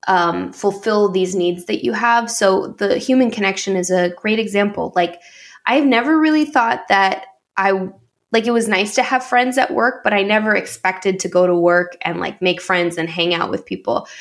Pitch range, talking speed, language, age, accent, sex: 190-235 Hz, 205 wpm, English, 10-29, American, female